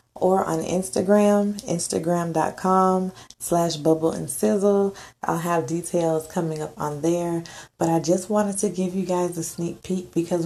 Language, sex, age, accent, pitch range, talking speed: English, female, 20-39, American, 155-180 Hz, 155 wpm